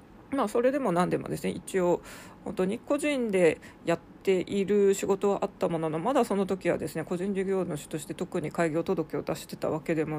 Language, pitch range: Japanese, 165-210 Hz